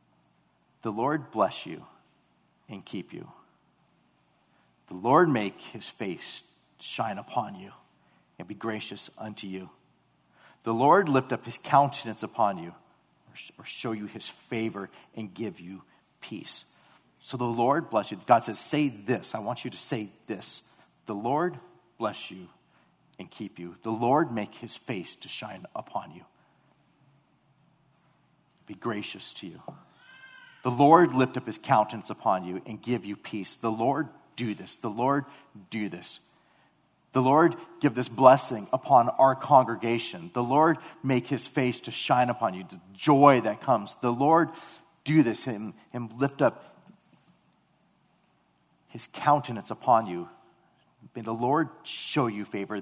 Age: 50-69